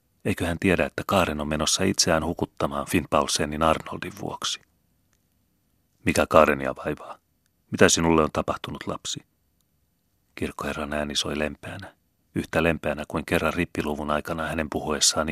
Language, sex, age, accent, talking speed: Finnish, male, 30-49, native, 130 wpm